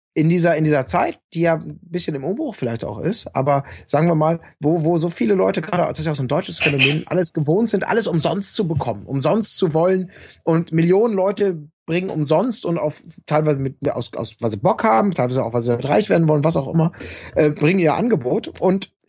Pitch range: 145-190 Hz